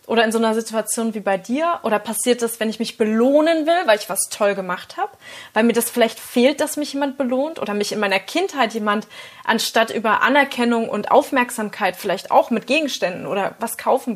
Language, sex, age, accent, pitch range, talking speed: German, female, 20-39, German, 210-260 Hz, 210 wpm